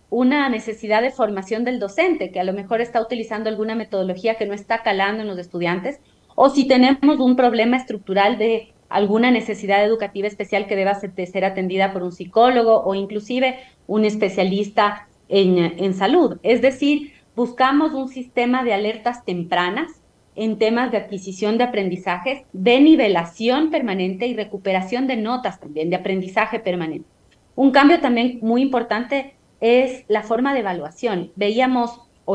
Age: 30-49